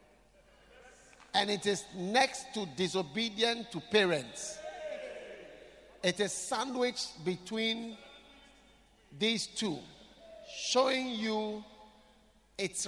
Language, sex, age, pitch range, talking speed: English, male, 50-69, 170-230 Hz, 80 wpm